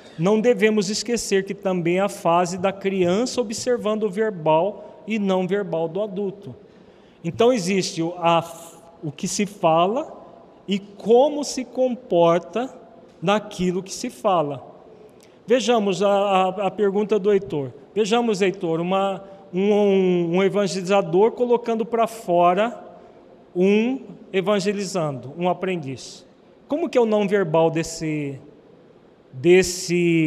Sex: male